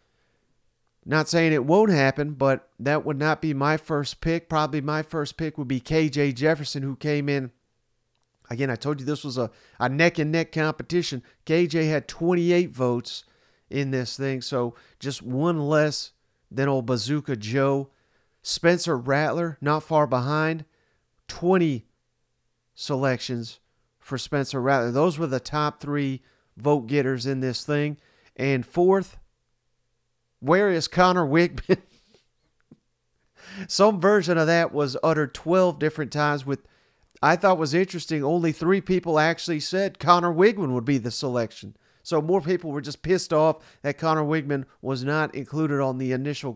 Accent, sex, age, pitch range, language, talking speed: American, male, 40-59, 135-165 Hz, English, 150 wpm